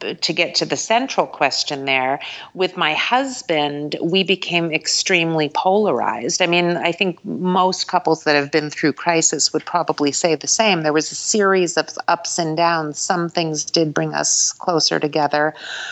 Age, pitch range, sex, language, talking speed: 40-59, 145-175 Hz, female, English, 170 wpm